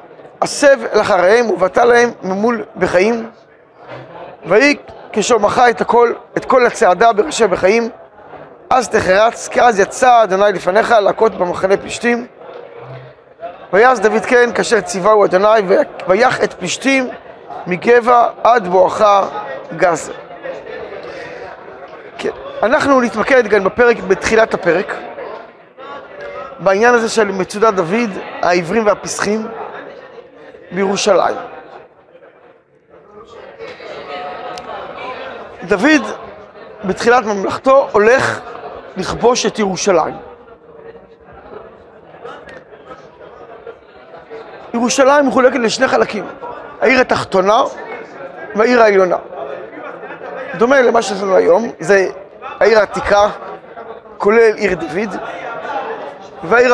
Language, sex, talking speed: Hebrew, male, 80 wpm